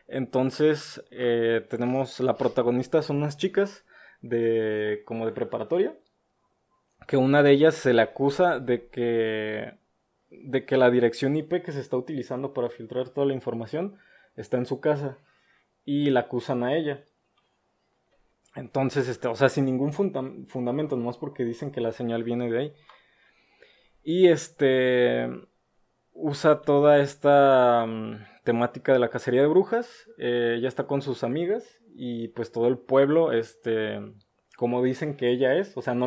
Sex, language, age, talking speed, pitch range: male, Spanish, 20-39, 150 wpm, 120-145 Hz